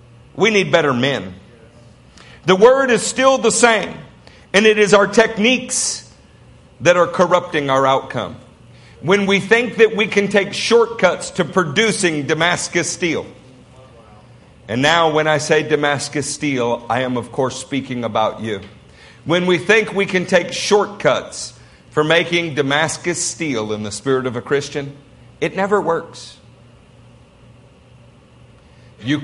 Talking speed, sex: 140 wpm, male